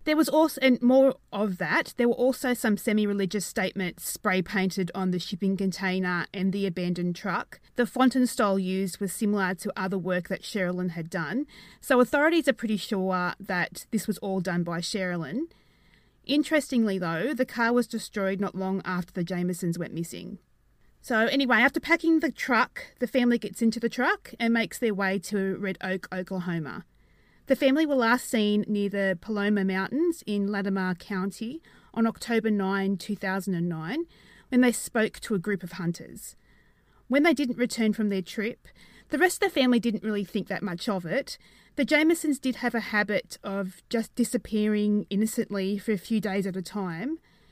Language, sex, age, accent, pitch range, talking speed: English, female, 30-49, Australian, 190-245 Hz, 180 wpm